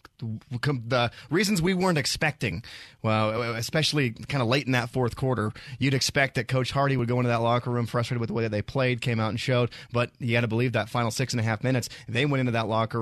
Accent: American